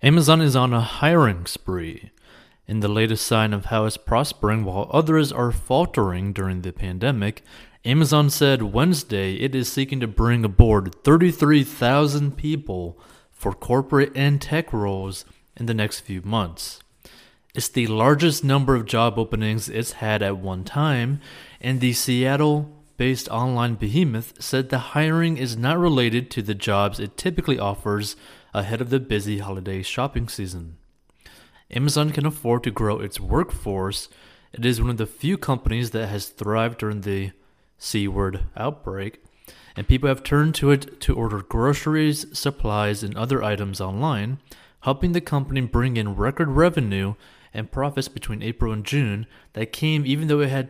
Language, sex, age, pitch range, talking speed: English, male, 30-49, 105-140 Hz, 155 wpm